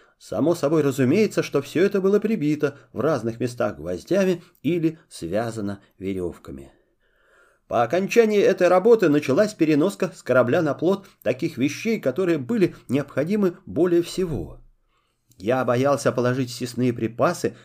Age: 30-49